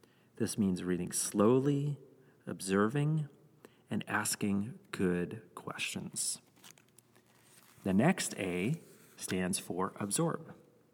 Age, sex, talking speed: 40-59, male, 80 wpm